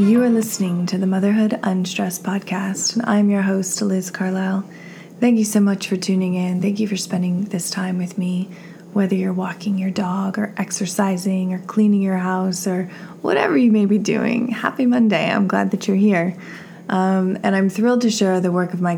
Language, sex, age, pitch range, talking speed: English, female, 20-39, 175-205 Hz, 200 wpm